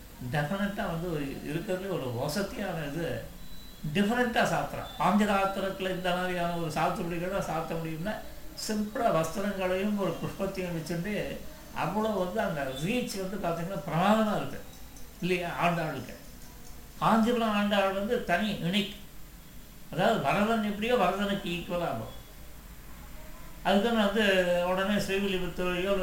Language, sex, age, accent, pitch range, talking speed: Tamil, male, 60-79, native, 165-200 Hz, 105 wpm